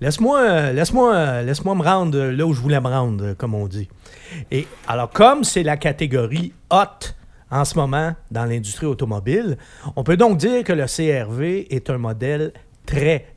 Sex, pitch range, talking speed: male, 120-160 Hz, 170 wpm